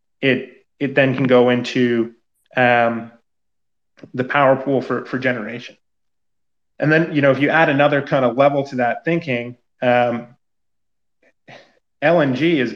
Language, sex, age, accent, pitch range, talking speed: English, male, 30-49, American, 120-145 Hz, 140 wpm